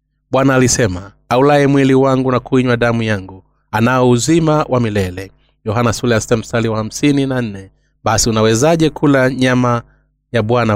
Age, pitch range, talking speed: 30-49, 105-130 Hz, 135 wpm